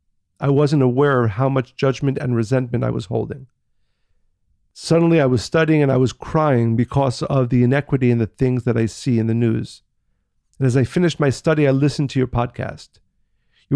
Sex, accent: male, American